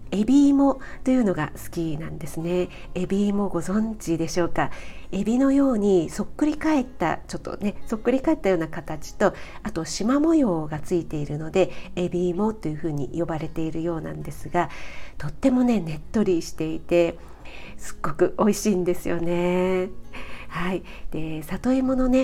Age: 50-69